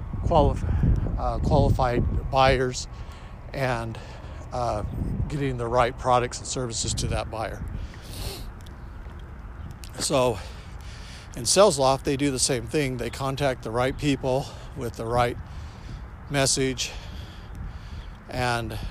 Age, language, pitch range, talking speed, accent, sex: 50-69, English, 100-130 Hz, 105 wpm, American, male